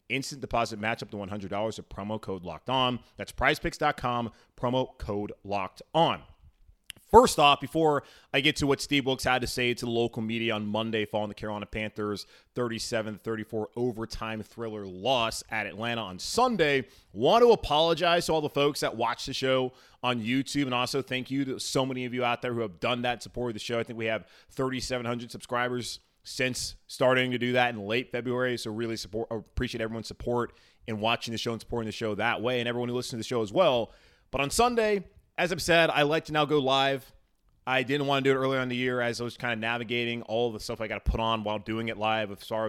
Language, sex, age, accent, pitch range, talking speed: English, male, 30-49, American, 110-135 Hz, 225 wpm